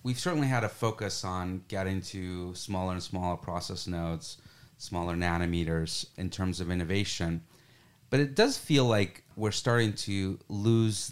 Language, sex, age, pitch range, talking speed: English, male, 30-49, 90-115 Hz, 150 wpm